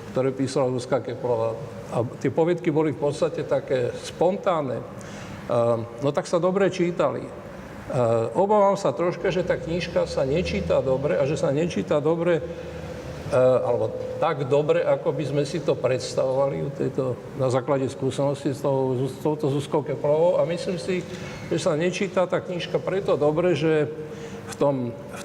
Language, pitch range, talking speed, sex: Slovak, 135-175 Hz, 155 wpm, male